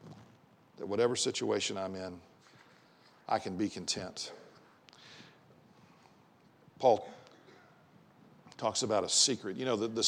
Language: English